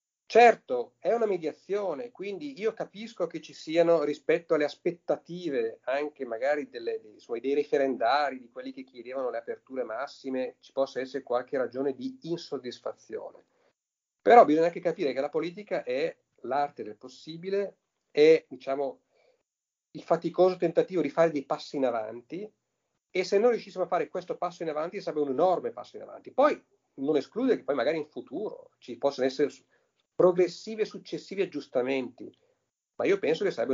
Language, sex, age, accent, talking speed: Italian, male, 40-59, native, 160 wpm